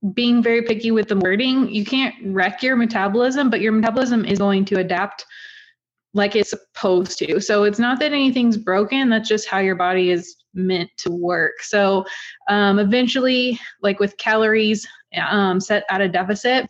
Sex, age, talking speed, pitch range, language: female, 20-39, 175 wpm, 185-215 Hz, English